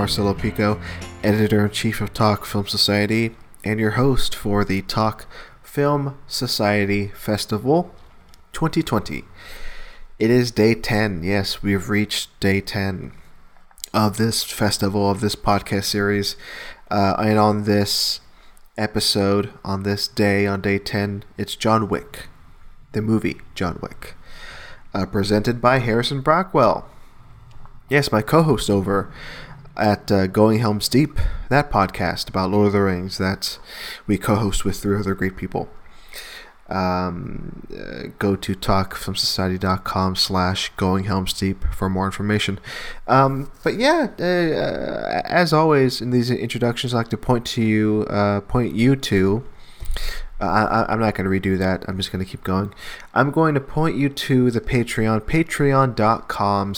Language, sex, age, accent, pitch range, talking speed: English, male, 20-39, American, 100-125 Hz, 145 wpm